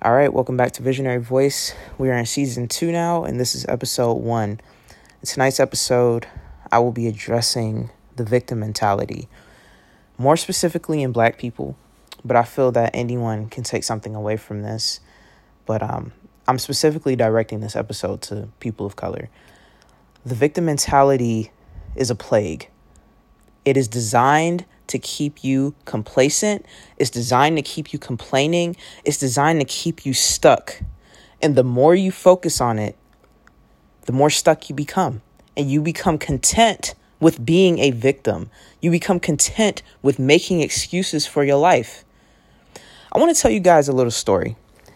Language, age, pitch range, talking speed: English, 20-39, 120-160 Hz, 155 wpm